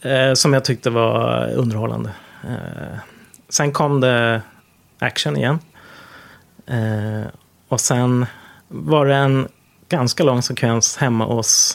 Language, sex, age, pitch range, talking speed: Swedish, male, 30-49, 110-140 Hz, 100 wpm